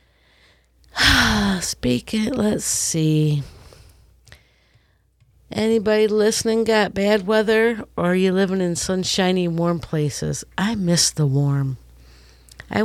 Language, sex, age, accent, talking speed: English, female, 50-69, American, 105 wpm